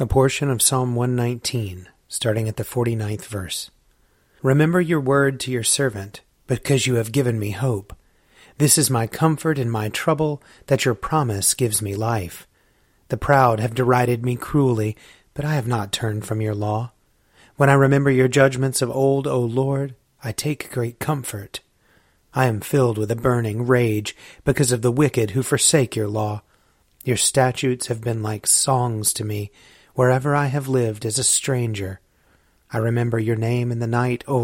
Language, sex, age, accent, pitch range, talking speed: English, male, 30-49, American, 110-135 Hz, 180 wpm